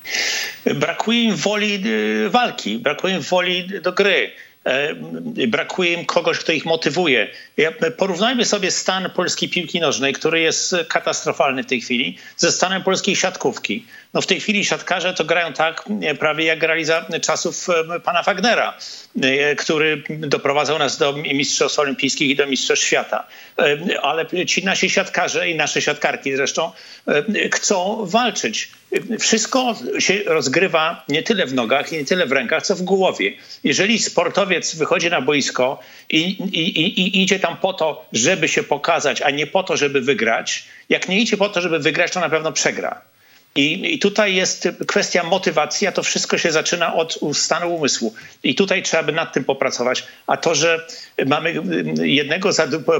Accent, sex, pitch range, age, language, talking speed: Polish, male, 155-195 Hz, 50-69, English, 160 wpm